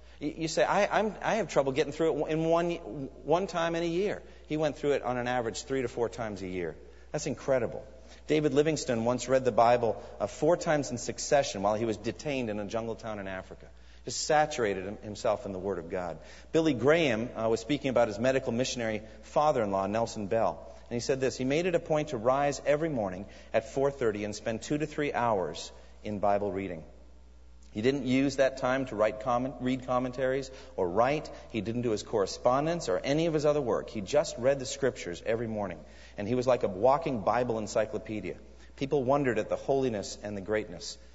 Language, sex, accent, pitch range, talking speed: English, male, American, 105-145 Hz, 205 wpm